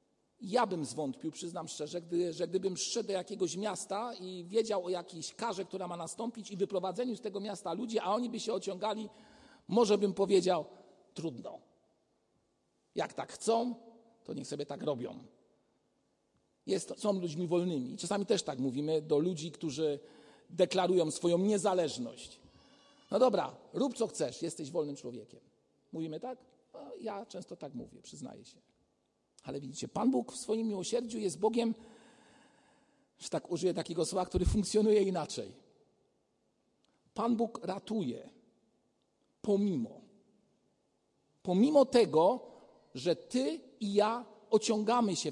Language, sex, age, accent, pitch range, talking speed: Polish, male, 50-69, native, 180-230 Hz, 135 wpm